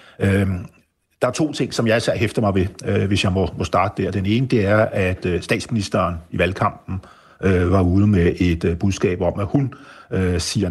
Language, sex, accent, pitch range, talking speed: Danish, male, native, 90-110 Hz, 180 wpm